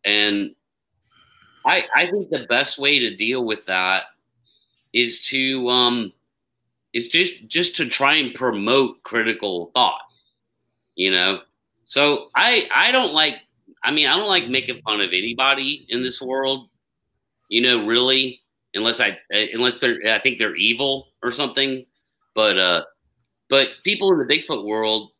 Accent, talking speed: American, 150 wpm